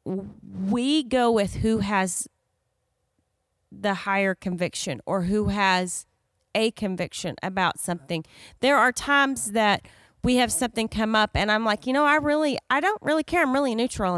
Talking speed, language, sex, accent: 160 wpm, English, female, American